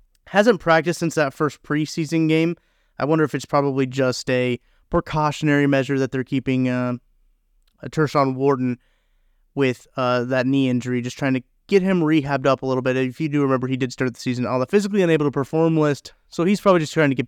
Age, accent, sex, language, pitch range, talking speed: 30-49, American, male, English, 130-160 Hz, 210 wpm